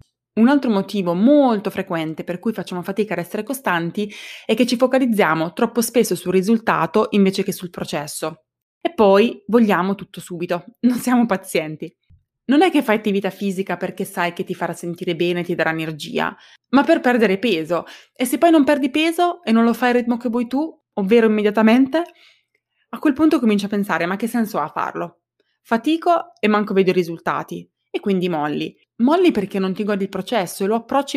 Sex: female